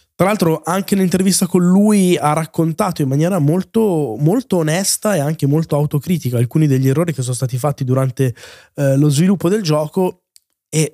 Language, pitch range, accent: Italian, 130-165 Hz, native